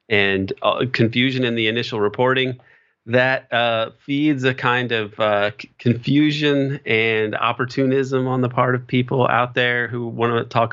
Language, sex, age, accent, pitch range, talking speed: English, male, 30-49, American, 115-130 Hz, 155 wpm